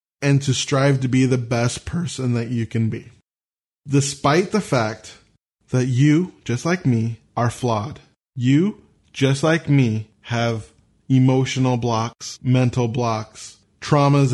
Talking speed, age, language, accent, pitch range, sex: 135 wpm, 20-39, English, American, 115-135 Hz, male